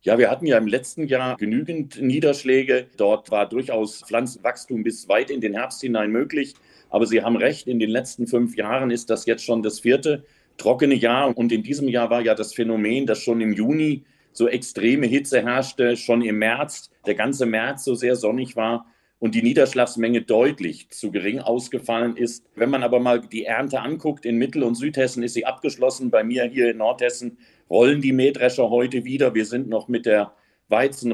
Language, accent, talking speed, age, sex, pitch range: German, German, 195 wpm, 40-59, male, 115-130 Hz